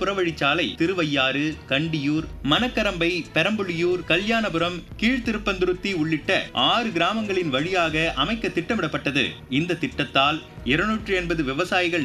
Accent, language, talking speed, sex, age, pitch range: native, Tamil, 90 wpm, male, 30-49, 145-170 Hz